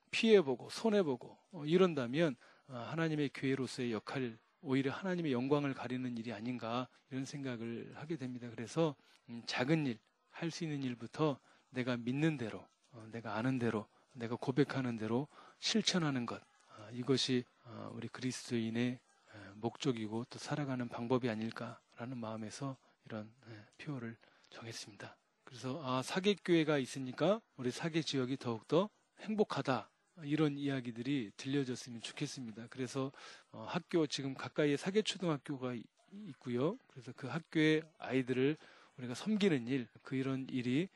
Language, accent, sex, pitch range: Korean, native, male, 120-150 Hz